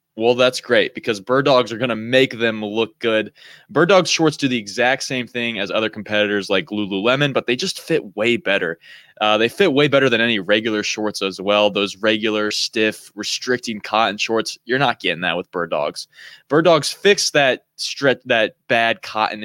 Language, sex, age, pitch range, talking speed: English, male, 20-39, 105-140 Hz, 195 wpm